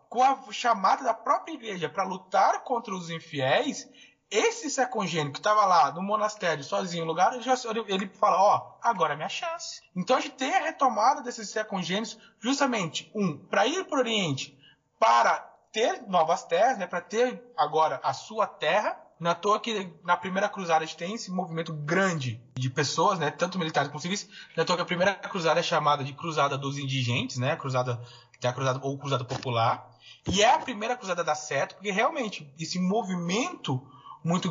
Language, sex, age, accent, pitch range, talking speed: Portuguese, male, 20-39, Brazilian, 155-225 Hz, 185 wpm